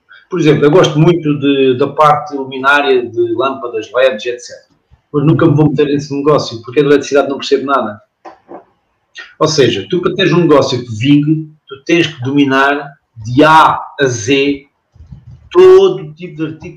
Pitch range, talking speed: 140-185 Hz, 170 wpm